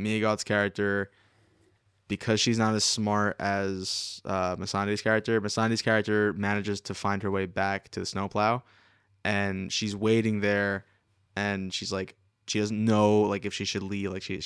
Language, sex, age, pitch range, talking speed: English, male, 20-39, 100-110 Hz, 165 wpm